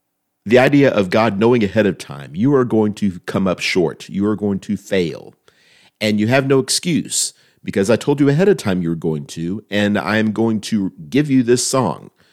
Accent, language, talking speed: American, English, 210 wpm